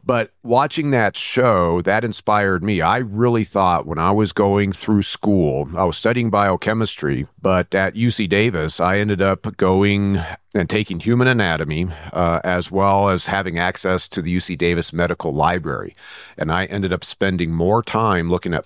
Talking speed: 170 wpm